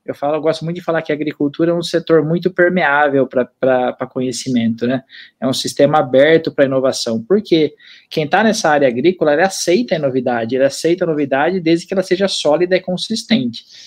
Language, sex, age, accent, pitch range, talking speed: Portuguese, male, 20-39, Brazilian, 145-185 Hz, 195 wpm